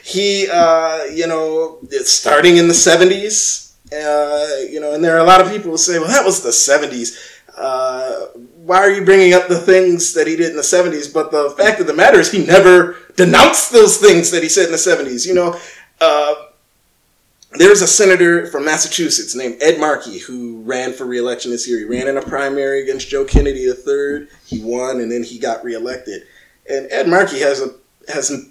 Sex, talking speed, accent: male, 205 wpm, American